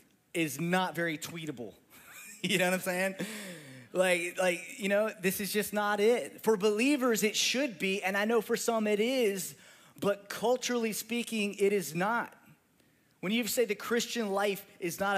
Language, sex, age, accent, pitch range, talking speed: English, male, 30-49, American, 180-230 Hz, 175 wpm